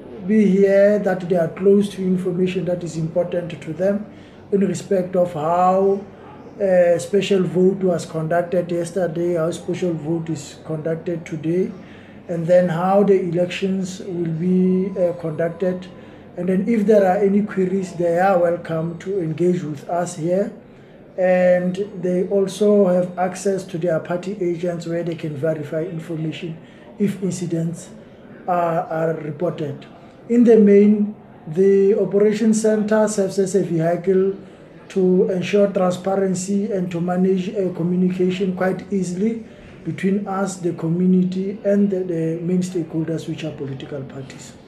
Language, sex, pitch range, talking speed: English, male, 175-205 Hz, 140 wpm